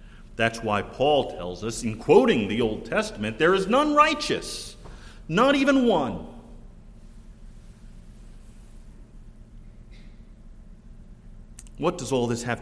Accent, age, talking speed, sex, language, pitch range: American, 40-59, 105 wpm, male, English, 115-155 Hz